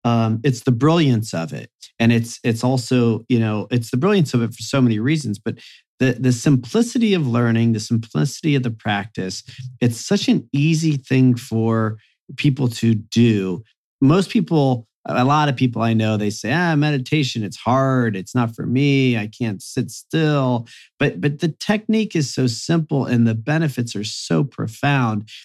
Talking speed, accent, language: 180 wpm, American, English